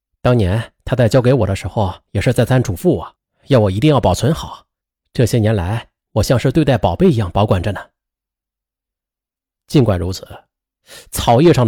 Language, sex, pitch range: Chinese, male, 110-170 Hz